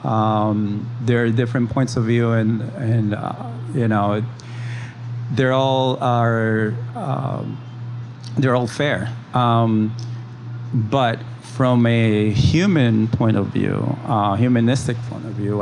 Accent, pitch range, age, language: American, 110-120 Hz, 40-59, English